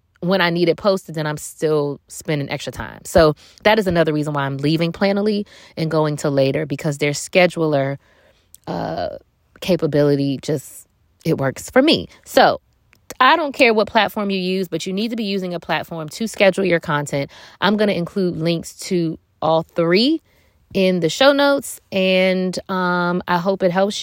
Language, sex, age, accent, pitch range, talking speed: English, female, 20-39, American, 155-210 Hz, 180 wpm